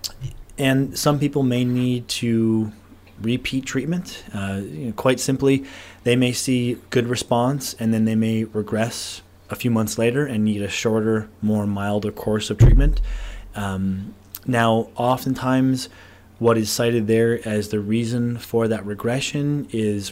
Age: 20-39